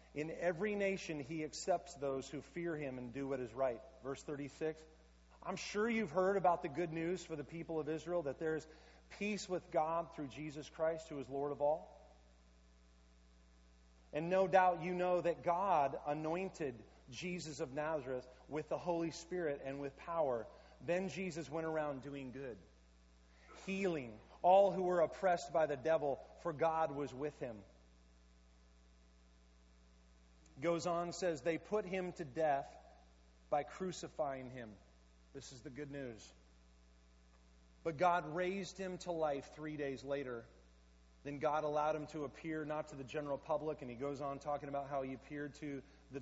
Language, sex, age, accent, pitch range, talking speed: English, male, 30-49, American, 125-170 Hz, 165 wpm